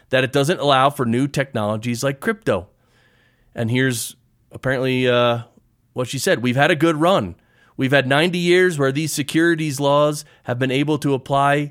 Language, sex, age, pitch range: English, male, 30-49, 115-140 Hz